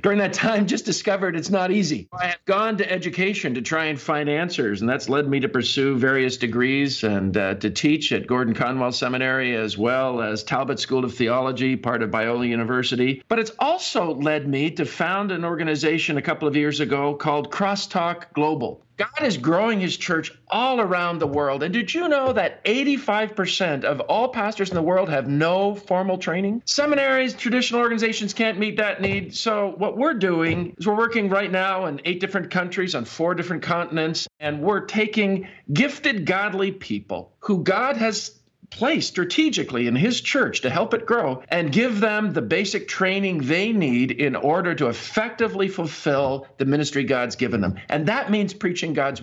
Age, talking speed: 50-69, 185 wpm